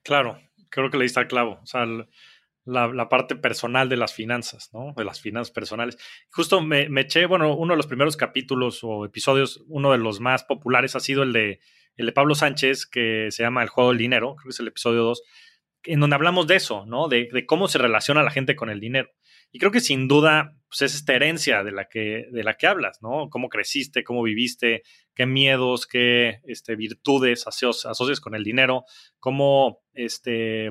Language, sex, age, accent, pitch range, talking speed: Spanish, male, 30-49, Mexican, 115-140 Hz, 210 wpm